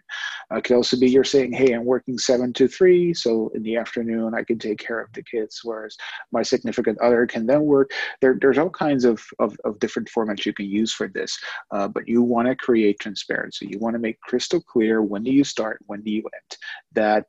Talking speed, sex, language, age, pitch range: 230 wpm, male, English, 30-49, 105-135 Hz